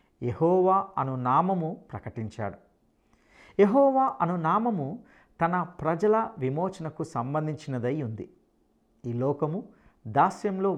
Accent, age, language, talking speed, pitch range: Indian, 50-69, English, 85 wpm, 125-185 Hz